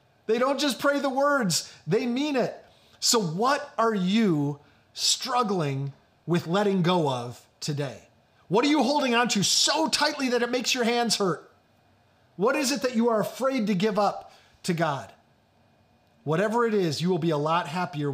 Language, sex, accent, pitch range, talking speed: English, male, American, 120-190 Hz, 180 wpm